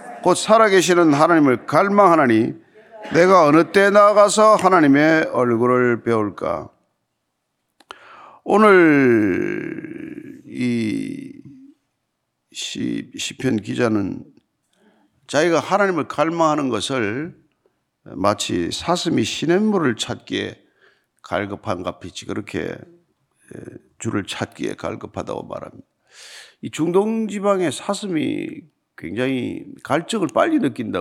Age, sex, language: 50-69, male, Korean